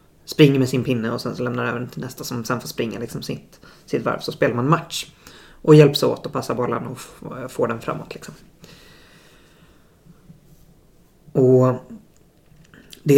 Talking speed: 145 wpm